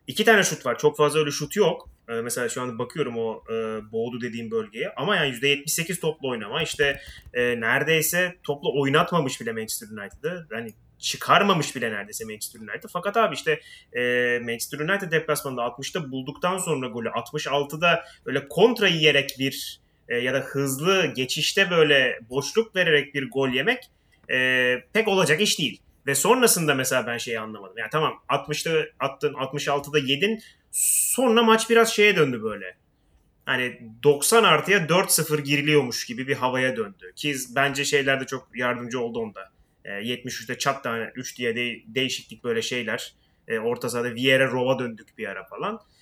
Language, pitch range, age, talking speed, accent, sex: Turkish, 125-175 Hz, 30-49, 160 wpm, native, male